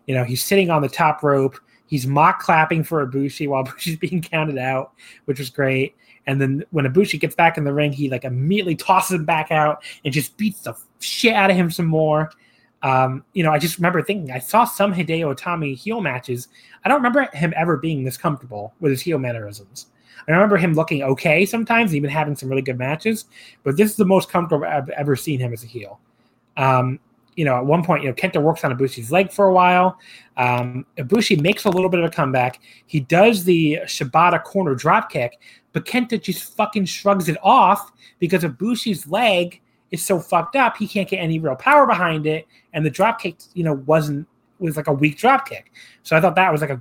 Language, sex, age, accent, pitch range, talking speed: English, male, 20-39, American, 135-185 Hz, 220 wpm